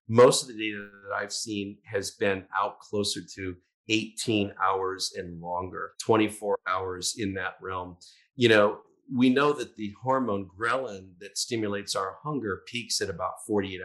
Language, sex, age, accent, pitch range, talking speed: English, male, 40-59, American, 100-115 Hz, 160 wpm